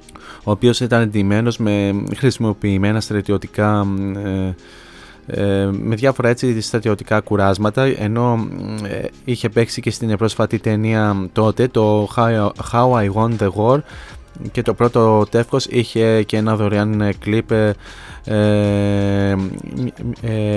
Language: Greek